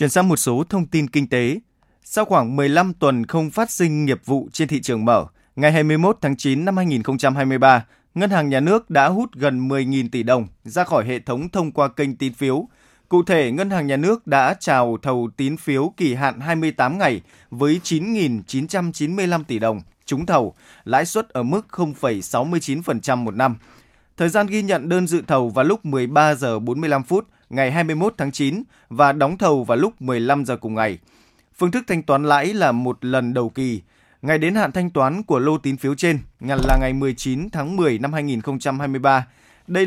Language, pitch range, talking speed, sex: Vietnamese, 130-170 Hz, 195 wpm, male